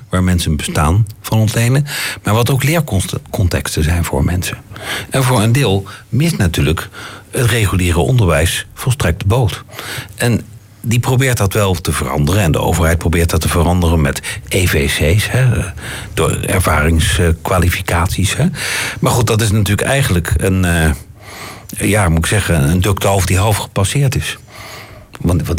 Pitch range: 90-120 Hz